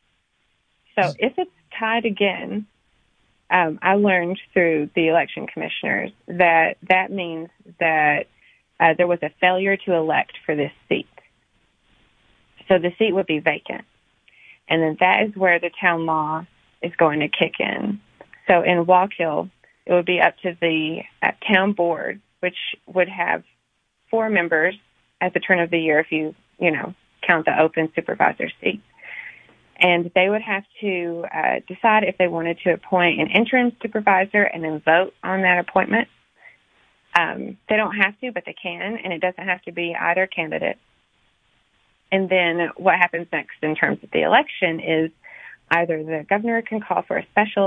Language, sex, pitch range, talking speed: English, female, 165-195 Hz, 170 wpm